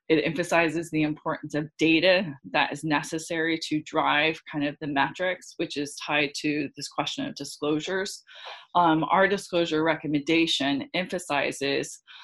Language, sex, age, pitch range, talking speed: English, female, 20-39, 145-165 Hz, 135 wpm